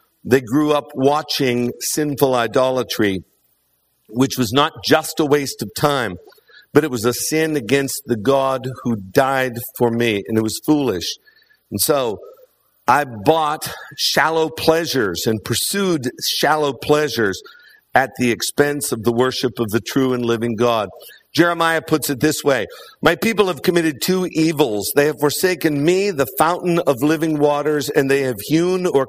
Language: English